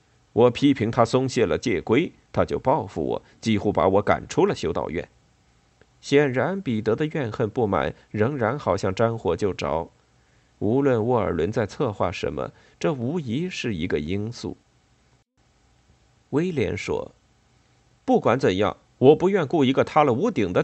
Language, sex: Chinese, male